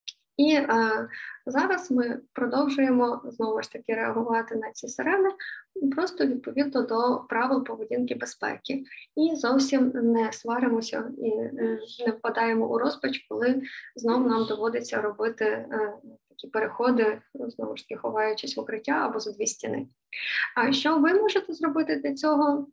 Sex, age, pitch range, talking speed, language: female, 20-39, 230-285 Hz, 135 wpm, Ukrainian